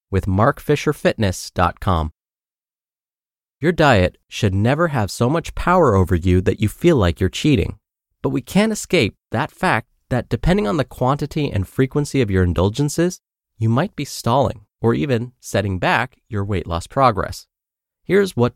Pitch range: 100-145 Hz